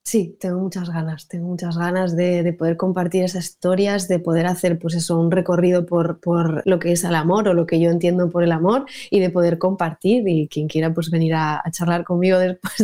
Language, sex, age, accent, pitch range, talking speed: Spanish, female, 20-39, Spanish, 170-200 Hz, 230 wpm